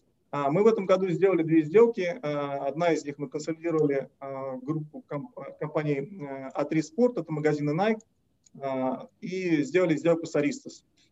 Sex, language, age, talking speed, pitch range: male, Russian, 30-49, 125 wpm, 145-175 Hz